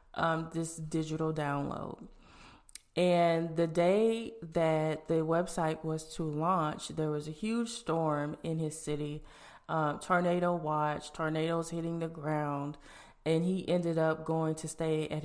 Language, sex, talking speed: English, female, 140 wpm